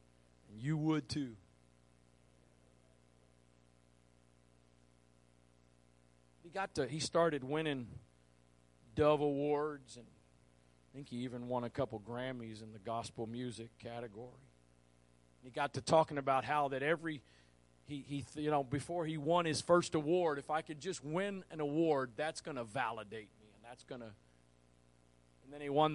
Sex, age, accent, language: male, 40-59, American, English